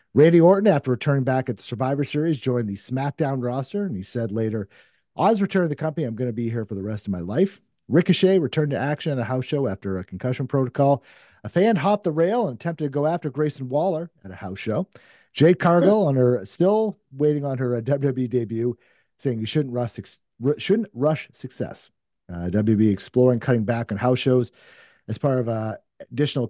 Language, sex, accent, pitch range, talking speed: English, male, American, 110-155 Hz, 210 wpm